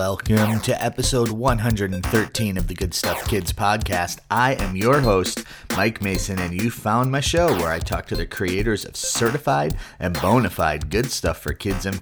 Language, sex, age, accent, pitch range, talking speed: English, male, 30-49, American, 95-120 Hz, 185 wpm